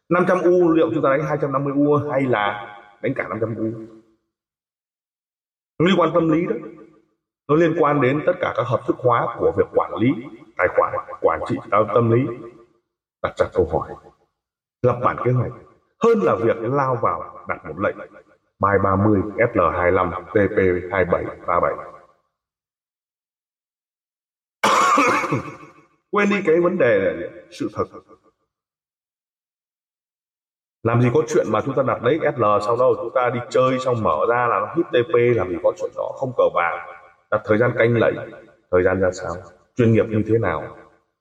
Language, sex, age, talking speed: Vietnamese, male, 20-39, 160 wpm